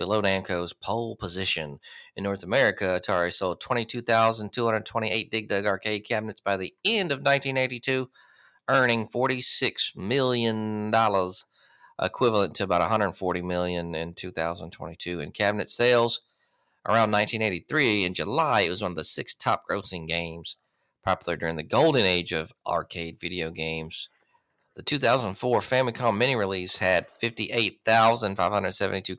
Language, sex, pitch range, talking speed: English, male, 85-115 Hz, 125 wpm